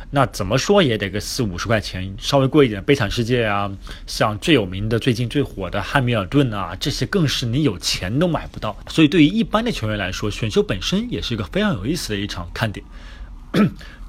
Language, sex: Chinese, male